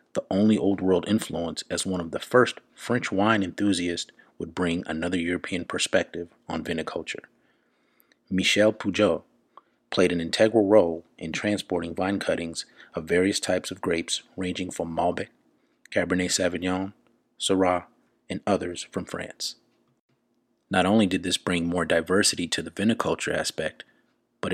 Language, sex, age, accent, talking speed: English, male, 30-49, American, 140 wpm